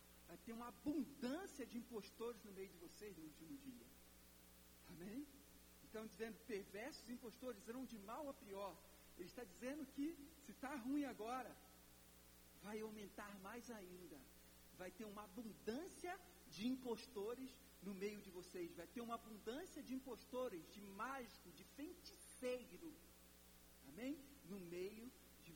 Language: Portuguese